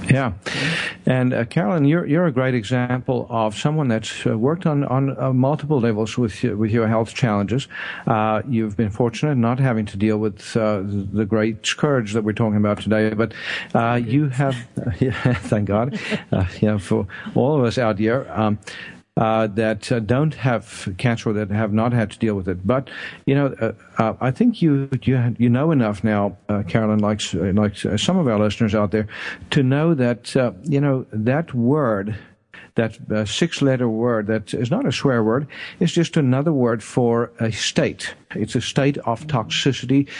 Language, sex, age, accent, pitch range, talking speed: English, male, 50-69, American, 110-140 Hz, 190 wpm